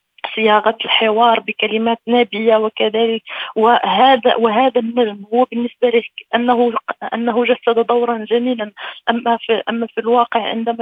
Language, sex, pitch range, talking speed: Arabic, female, 220-250 Hz, 120 wpm